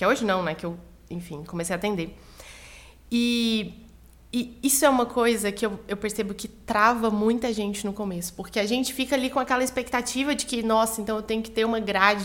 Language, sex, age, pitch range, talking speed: Portuguese, female, 20-39, 200-240 Hz, 215 wpm